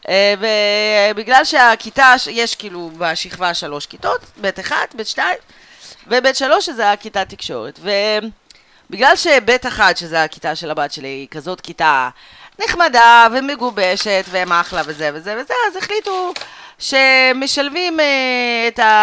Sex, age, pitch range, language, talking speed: female, 30-49, 160-265 Hz, Hebrew, 120 wpm